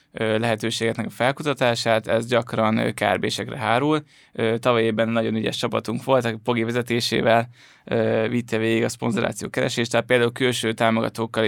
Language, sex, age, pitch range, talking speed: Hungarian, male, 20-39, 115-125 Hz, 120 wpm